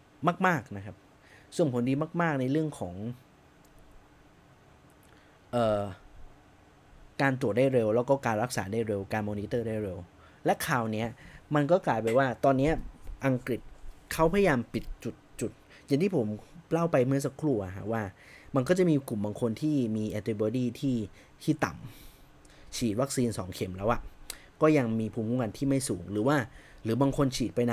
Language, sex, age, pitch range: Thai, male, 20-39, 105-140 Hz